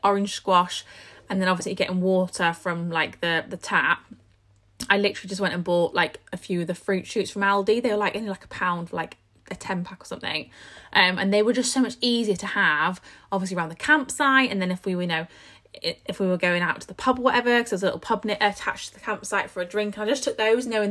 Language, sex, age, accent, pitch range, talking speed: English, female, 20-39, British, 180-235 Hz, 260 wpm